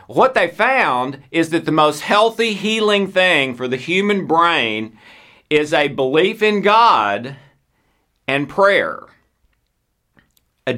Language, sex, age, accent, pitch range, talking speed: English, male, 50-69, American, 130-170 Hz, 120 wpm